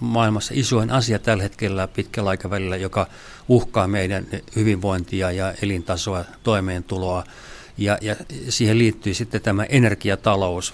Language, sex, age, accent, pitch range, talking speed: Finnish, male, 60-79, native, 95-115 Hz, 110 wpm